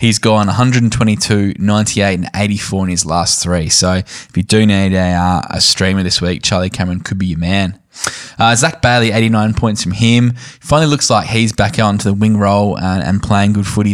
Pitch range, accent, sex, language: 95-115 Hz, Australian, male, English